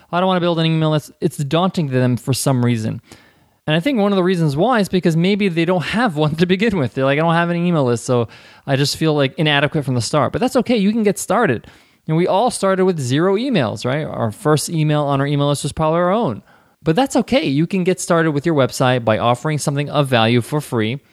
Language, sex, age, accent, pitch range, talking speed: English, male, 20-39, American, 125-165 Hz, 265 wpm